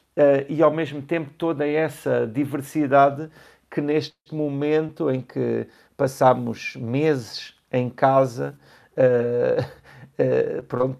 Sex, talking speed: male, 110 wpm